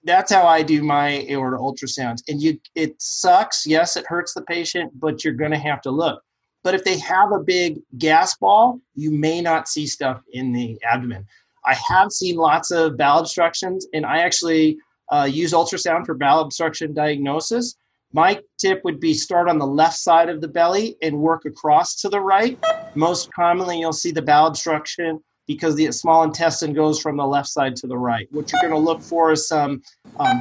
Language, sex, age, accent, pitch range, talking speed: English, male, 30-49, American, 150-180 Hz, 200 wpm